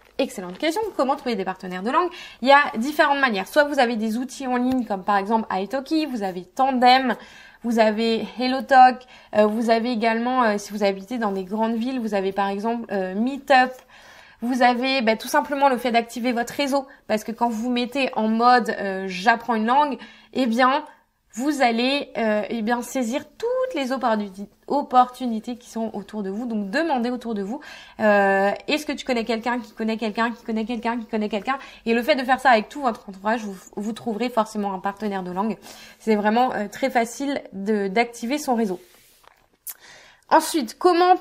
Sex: female